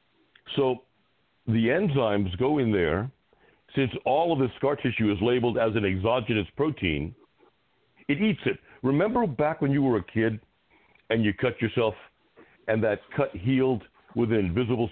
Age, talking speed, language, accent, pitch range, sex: 60-79, 155 wpm, English, American, 105-135 Hz, male